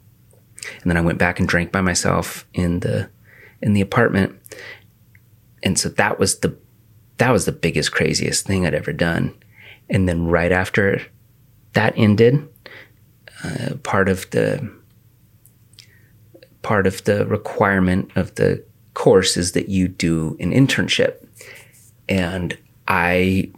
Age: 30-49